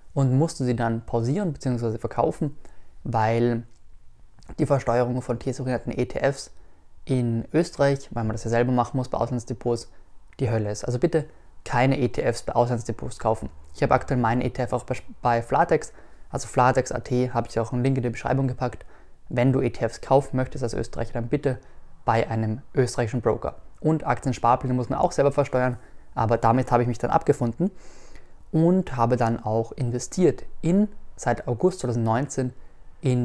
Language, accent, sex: German, German, male